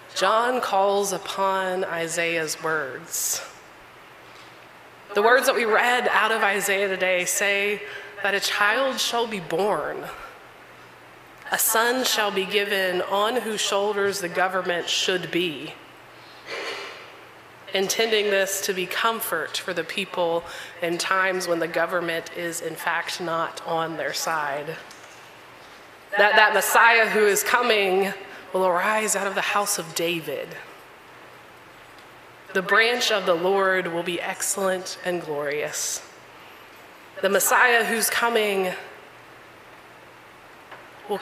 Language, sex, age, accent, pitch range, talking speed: English, female, 20-39, American, 180-210 Hz, 120 wpm